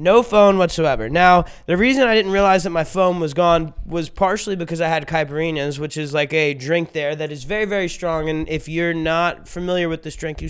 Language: English